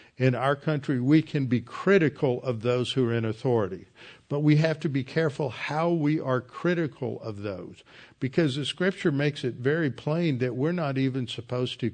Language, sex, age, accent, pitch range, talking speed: English, male, 50-69, American, 115-140 Hz, 190 wpm